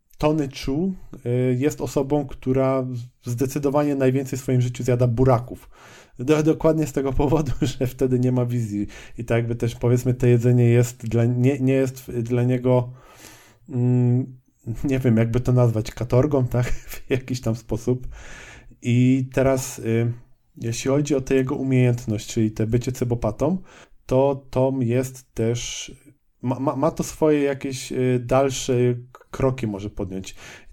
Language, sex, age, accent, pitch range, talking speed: Polish, male, 20-39, native, 120-135 Hz, 145 wpm